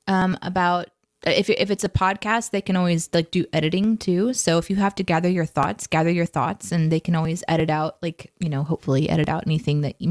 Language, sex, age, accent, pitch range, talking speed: English, female, 20-39, American, 160-195 Hz, 235 wpm